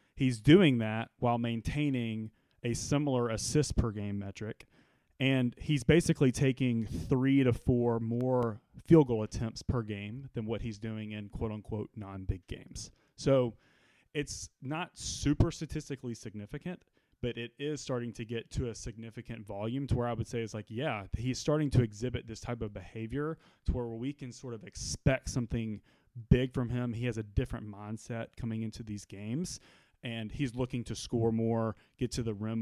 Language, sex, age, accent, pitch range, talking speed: English, male, 30-49, American, 110-130 Hz, 175 wpm